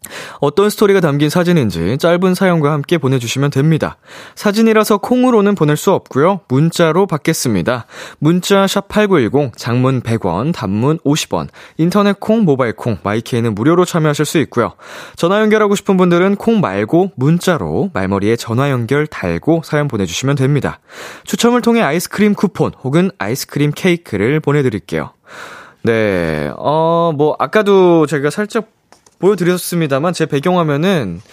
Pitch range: 115-180 Hz